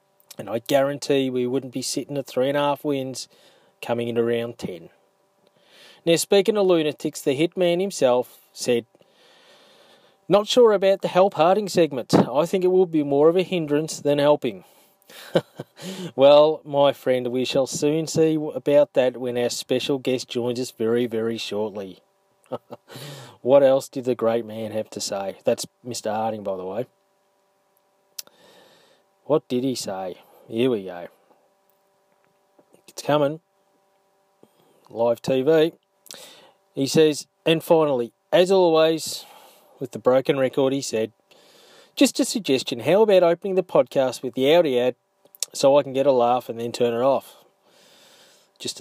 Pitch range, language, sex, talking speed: 125-175 Hz, English, male, 150 wpm